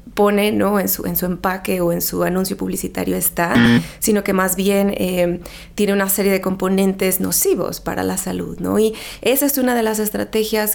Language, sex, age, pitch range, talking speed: Spanish, female, 30-49, 195-230 Hz, 195 wpm